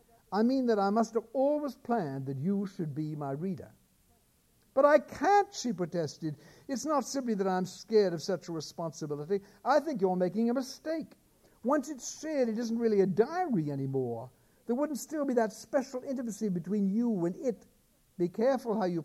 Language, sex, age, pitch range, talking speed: English, male, 60-79, 155-225 Hz, 185 wpm